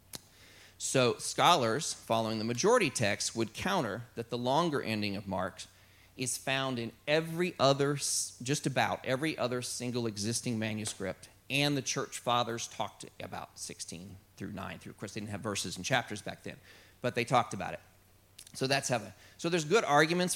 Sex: male